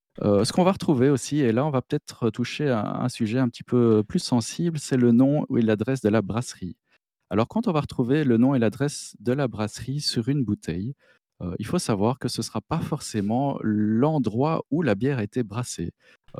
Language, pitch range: French, 105-135 Hz